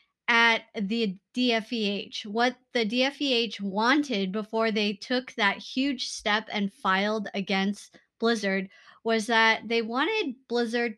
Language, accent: English, American